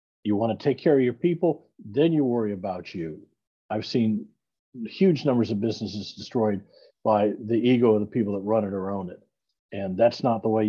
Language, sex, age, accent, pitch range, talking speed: English, male, 50-69, American, 105-140 Hz, 200 wpm